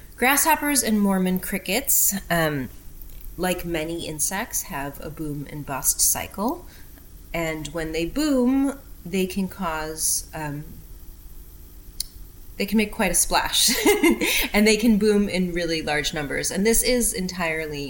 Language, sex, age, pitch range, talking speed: English, female, 30-49, 135-180 Hz, 135 wpm